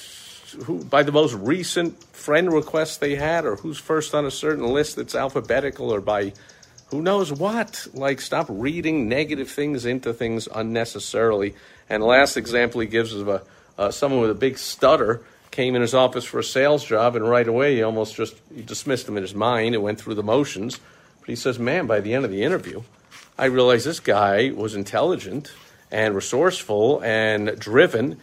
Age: 50-69